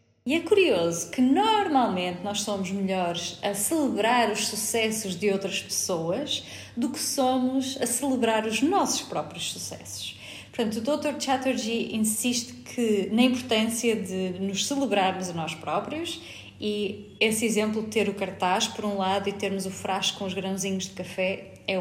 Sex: female